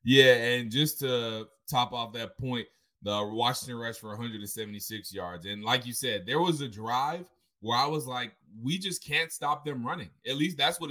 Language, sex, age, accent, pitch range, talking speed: English, male, 20-39, American, 110-150 Hz, 200 wpm